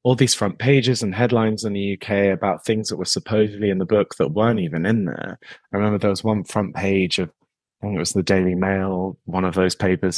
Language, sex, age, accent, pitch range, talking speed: English, male, 20-39, British, 100-120 Hz, 240 wpm